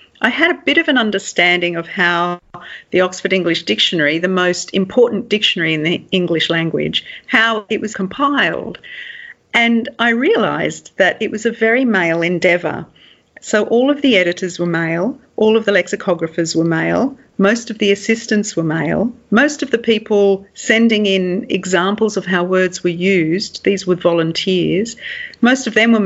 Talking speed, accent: 170 wpm, Australian